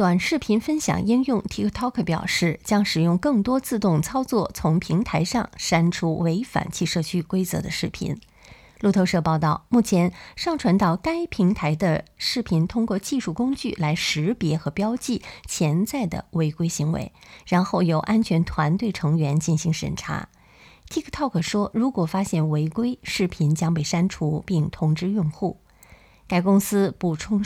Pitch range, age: 165-210 Hz, 20-39